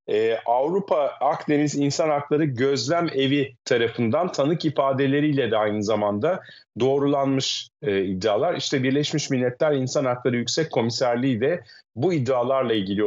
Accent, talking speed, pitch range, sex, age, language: native, 125 wpm, 105-135 Hz, male, 40-59, Turkish